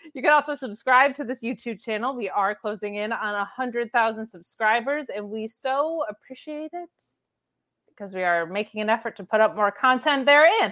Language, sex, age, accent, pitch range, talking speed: English, female, 20-39, American, 200-270 Hz, 185 wpm